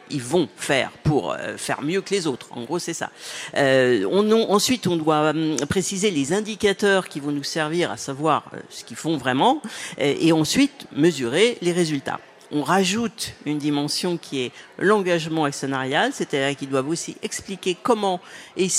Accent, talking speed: French, 180 wpm